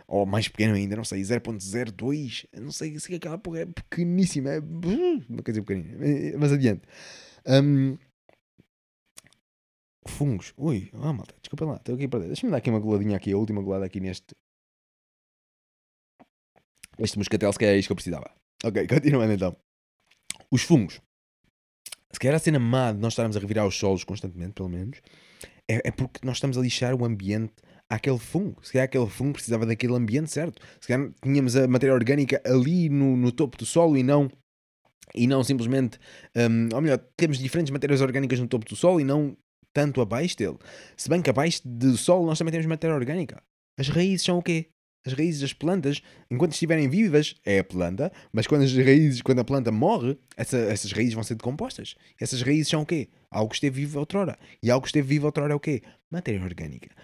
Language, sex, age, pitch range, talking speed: Portuguese, male, 20-39, 110-150 Hz, 200 wpm